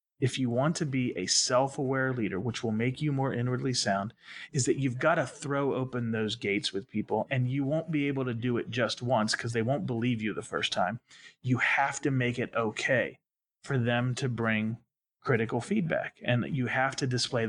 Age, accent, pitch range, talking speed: 30-49, American, 120-140 Hz, 210 wpm